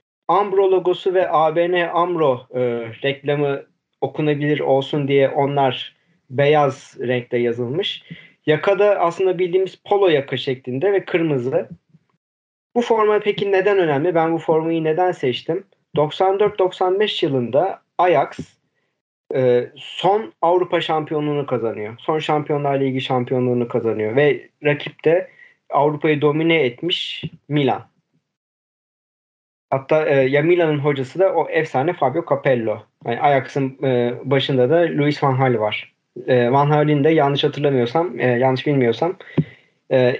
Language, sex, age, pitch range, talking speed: Turkish, male, 40-59, 130-170 Hz, 120 wpm